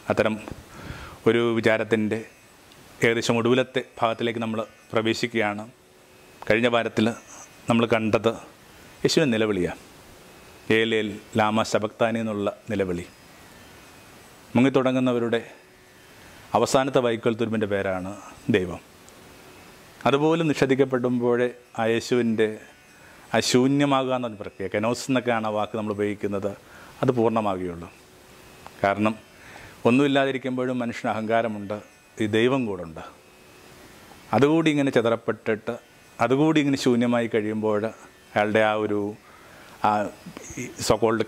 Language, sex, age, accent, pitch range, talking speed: Malayalam, male, 30-49, native, 105-125 Hz, 85 wpm